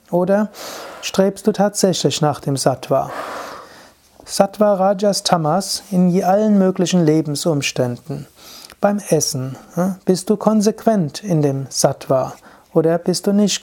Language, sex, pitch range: German, male, 145-185 Hz